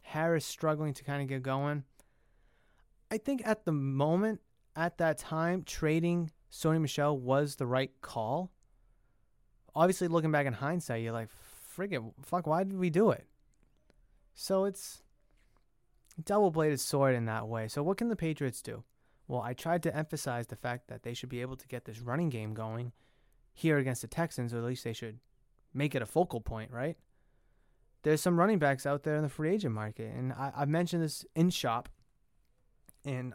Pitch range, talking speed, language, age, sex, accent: 120-160 Hz, 185 wpm, English, 20-39, male, American